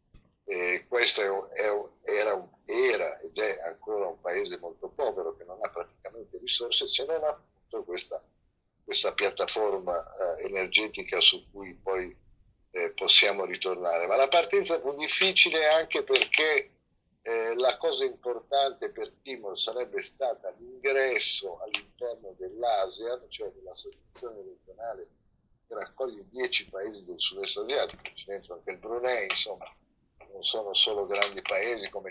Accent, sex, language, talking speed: native, male, Italian, 140 wpm